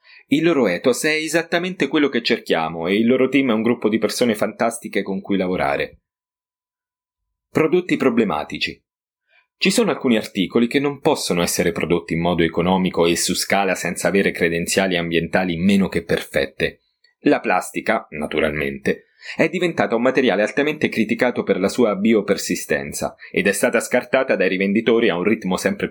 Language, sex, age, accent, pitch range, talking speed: Italian, male, 30-49, native, 85-140 Hz, 155 wpm